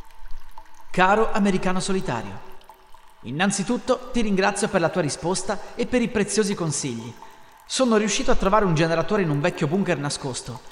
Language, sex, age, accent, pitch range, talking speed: Italian, male, 30-49, native, 155-210 Hz, 145 wpm